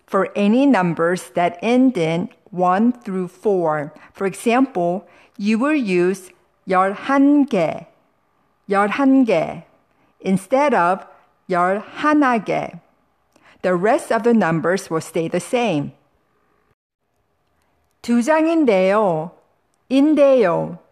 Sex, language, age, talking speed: female, English, 50-69, 85 wpm